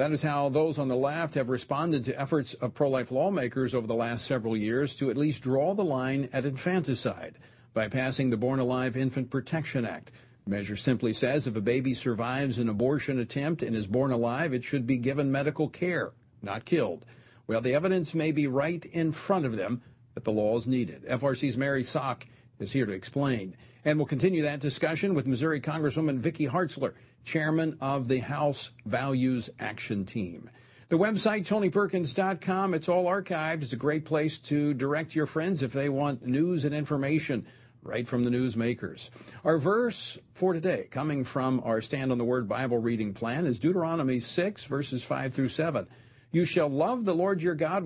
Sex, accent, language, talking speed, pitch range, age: male, American, English, 185 wpm, 125-160 Hz, 50-69